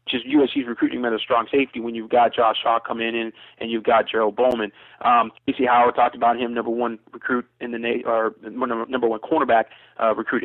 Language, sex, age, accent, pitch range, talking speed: English, male, 20-39, American, 115-130 Hz, 220 wpm